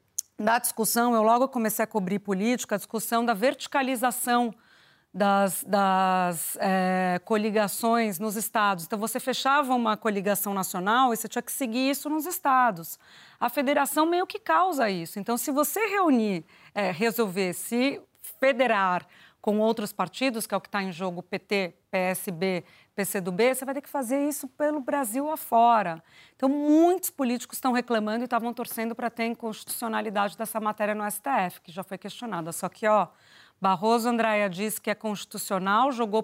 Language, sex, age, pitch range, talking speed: Portuguese, female, 40-59, 190-245 Hz, 160 wpm